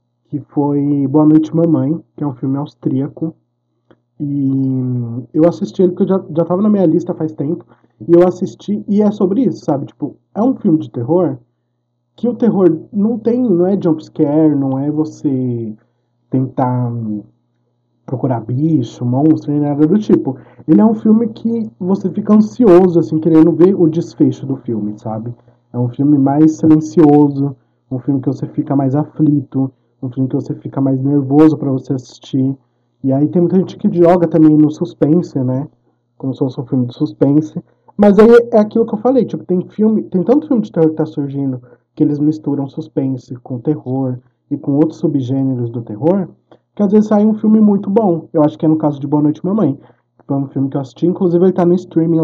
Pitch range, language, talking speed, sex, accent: 130-175 Hz, Portuguese, 195 wpm, male, Brazilian